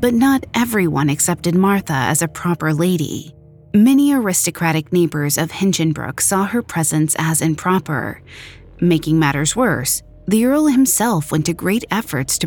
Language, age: English, 30-49